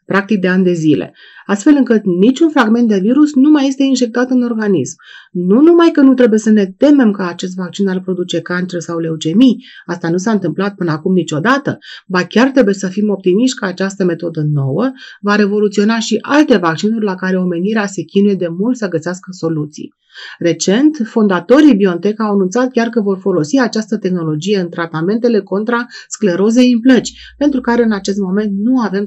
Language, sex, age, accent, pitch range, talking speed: Romanian, female, 30-49, native, 180-240 Hz, 185 wpm